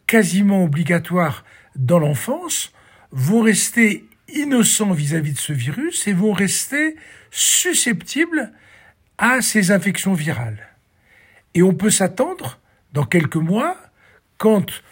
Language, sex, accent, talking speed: French, male, French, 110 wpm